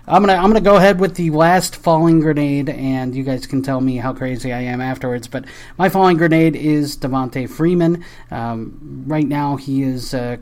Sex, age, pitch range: male, 30-49, 125-155 Hz